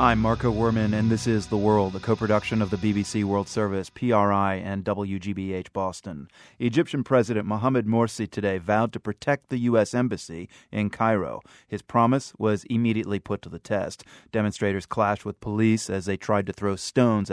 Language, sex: English, male